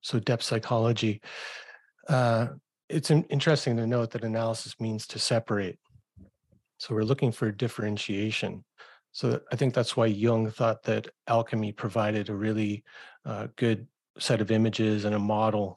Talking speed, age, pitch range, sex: 150 wpm, 40-59, 105-125 Hz, male